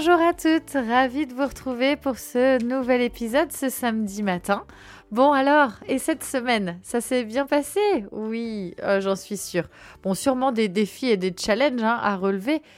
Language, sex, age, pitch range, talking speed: French, female, 20-39, 195-275 Hz, 180 wpm